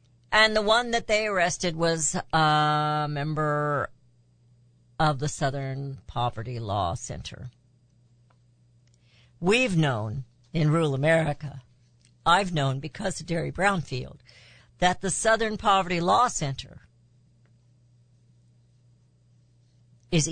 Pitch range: 120-155 Hz